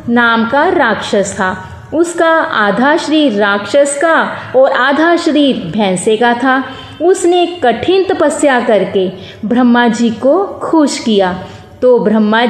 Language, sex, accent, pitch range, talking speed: Hindi, female, native, 220-300 Hz, 115 wpm